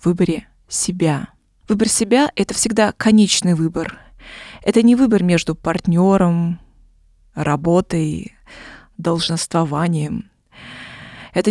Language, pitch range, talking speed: Russian, 165-205 Hz, 85 wpm